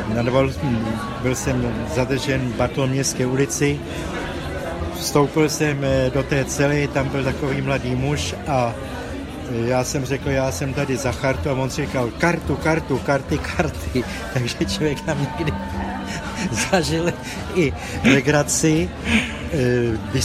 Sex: male